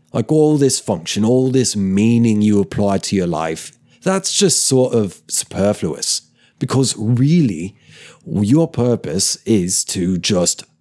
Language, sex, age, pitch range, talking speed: English, male, 30-49, 100-120 Hz, 135 wpm